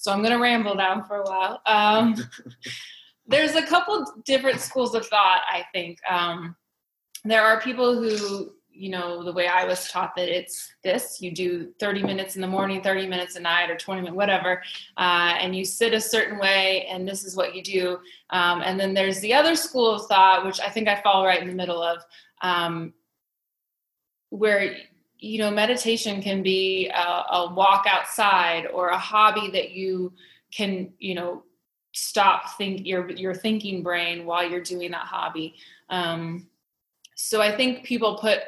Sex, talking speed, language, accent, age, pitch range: female, 180 wpm, English, American, 20-39, 180-210 Hz